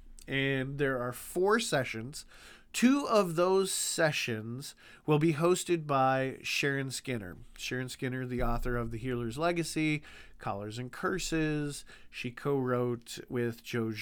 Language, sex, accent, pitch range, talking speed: English, male, American, 130-180 Hz, 130 wpm